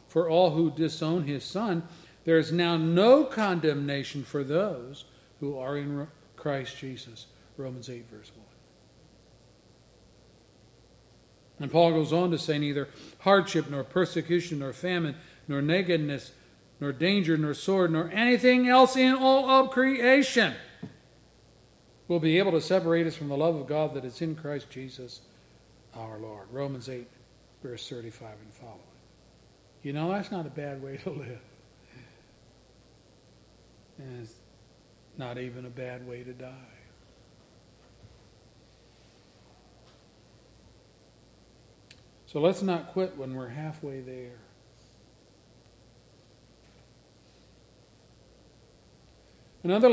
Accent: American